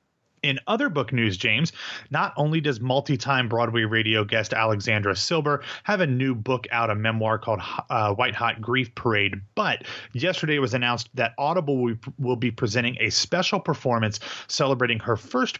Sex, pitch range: male, 110-130 Hz